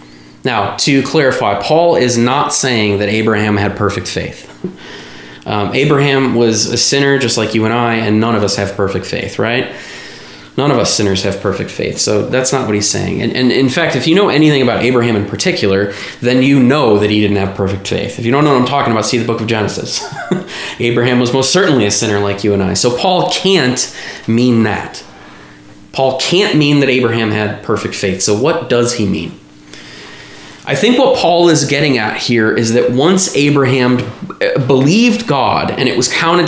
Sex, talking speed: male, 200 wpm